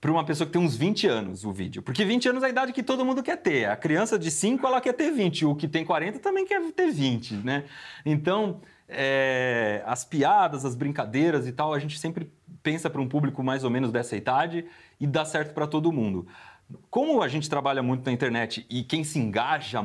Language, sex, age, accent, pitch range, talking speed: Portuguese, male, 30-49, Brazilian, 130-180 Hz, 225 wpm